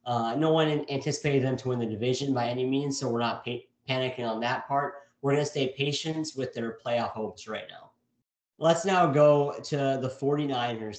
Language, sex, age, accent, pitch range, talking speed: English, male, 30-49, American, 120-140 Hz, 200 wpm